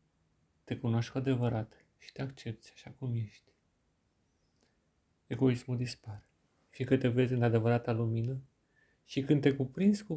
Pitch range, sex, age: 115-130 Hz, male, 40-59